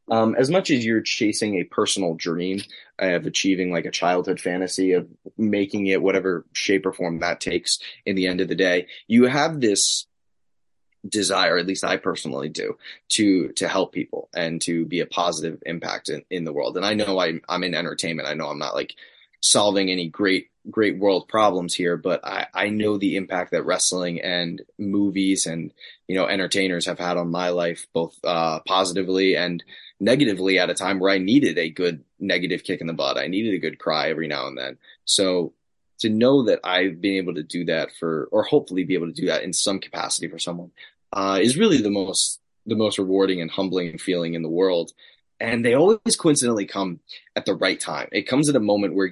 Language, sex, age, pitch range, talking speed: English, male, 20-39, 90-110 Hz, 210 wpm